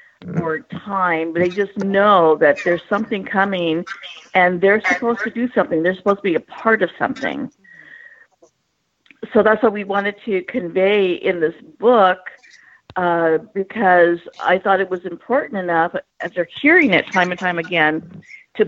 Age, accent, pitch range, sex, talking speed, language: 50-69, American, 170-205 Hz, female, 165 wpm, English